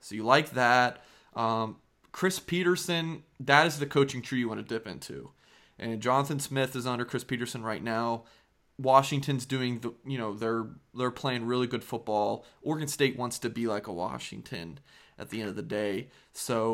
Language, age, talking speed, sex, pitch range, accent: English, 20-39, 185 wpm, male, 110-135 Hz, American